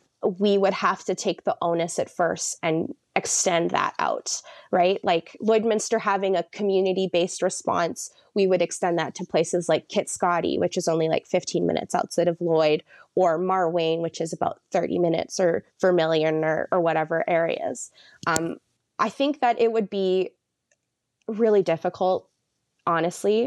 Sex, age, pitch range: female, 20-39, 165-200 Hz